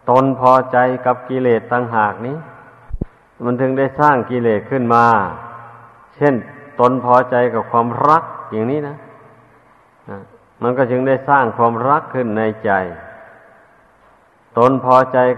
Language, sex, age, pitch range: Thai, male, 60-79, 115-130 Hz